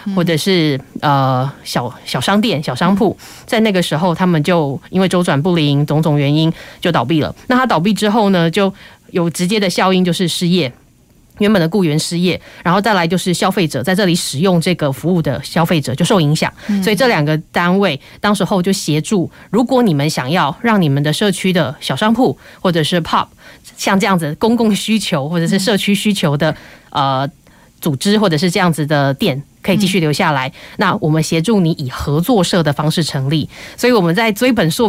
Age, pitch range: 20-39, 160-200 Hz